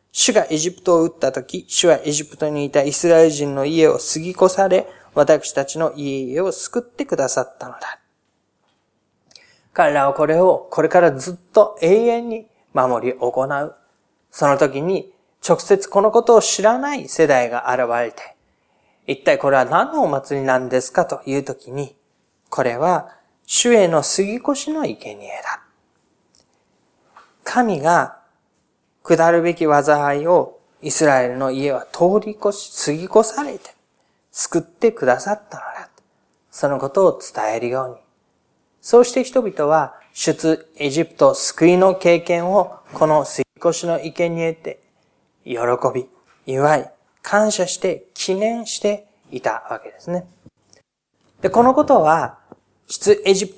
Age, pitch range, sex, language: 20-39, 140-210 Hz, male, Japanese